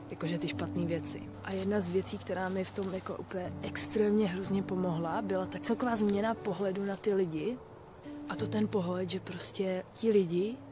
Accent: native